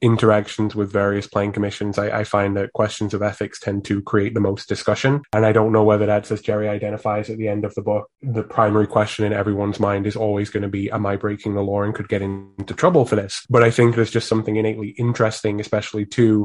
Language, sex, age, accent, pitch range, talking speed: English, male, 20-39, British, 105-115 Hz, 240 wpm